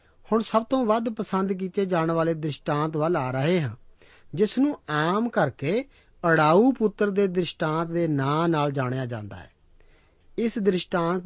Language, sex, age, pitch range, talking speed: Punjabi, male, 50-69, 140-195 Hz, 155 wpm